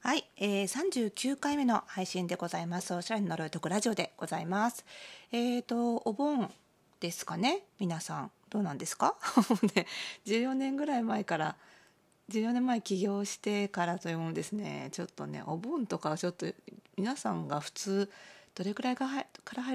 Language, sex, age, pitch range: Japanese, female, 40-59, 170-225 Hz